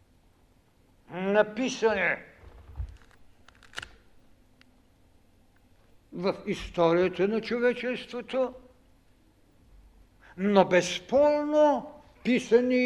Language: Bulgarian